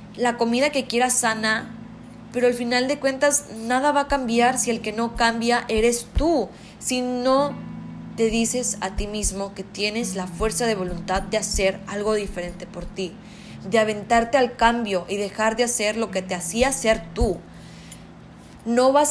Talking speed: 175 wpm